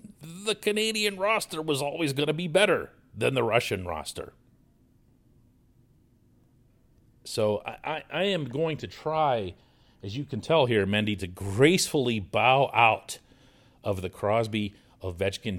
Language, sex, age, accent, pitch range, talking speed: English, male, 40-59, American, 100-130 Hz, 125 wpm